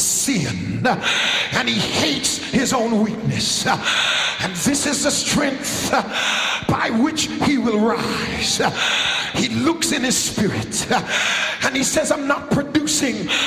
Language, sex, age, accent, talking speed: English, male, 50-69, American, 120 wpm